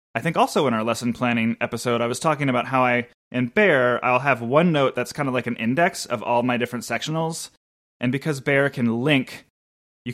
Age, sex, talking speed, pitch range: 20-39, male, 220 wpm, 115-140 Hz